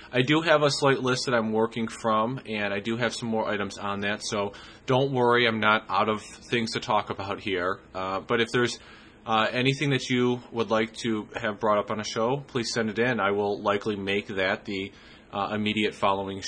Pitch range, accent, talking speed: 100-115 Hz, American, 220 wpm